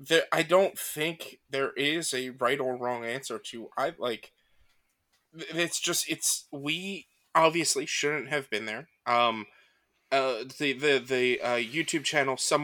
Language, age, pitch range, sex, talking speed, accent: English, 20-39, 130-165 Hz, male, 150 wpm, American